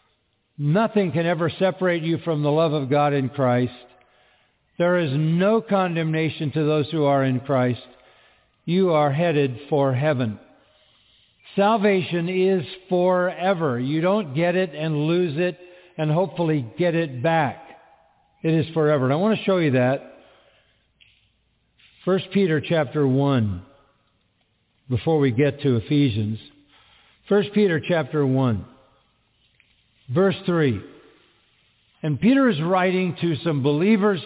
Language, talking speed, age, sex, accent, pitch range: English, 130 wpm, 50-69, male, American, 135-180 Hz